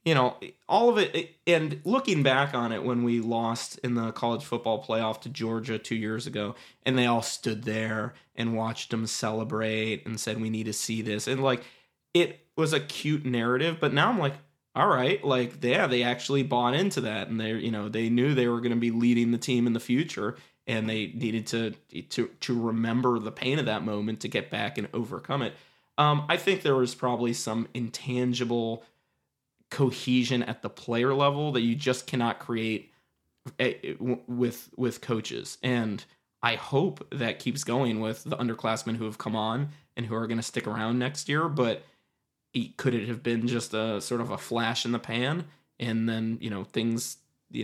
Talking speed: 200 wpm